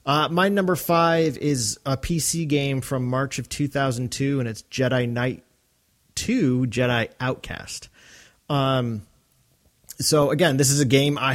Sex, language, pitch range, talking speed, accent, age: male, English, 110-145 Hz, 145 wpm, American, 30-49